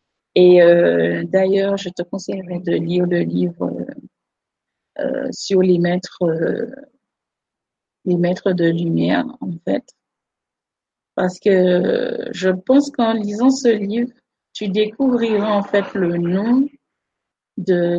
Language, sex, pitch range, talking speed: French, female, 175-230 Hz, 125 wpm